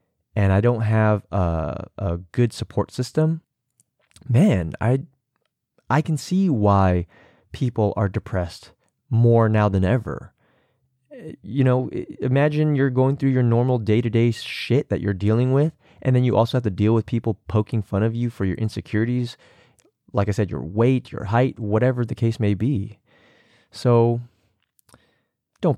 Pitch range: 105-135 Hz